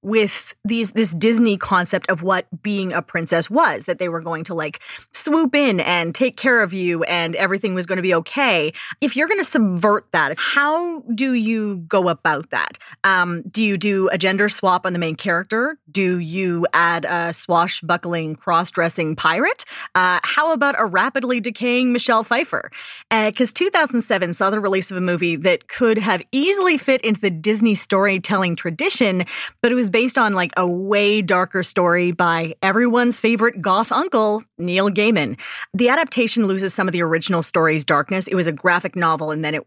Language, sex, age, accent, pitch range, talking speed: English, female, 30-49, American, 170-230 Hz, 185 wpm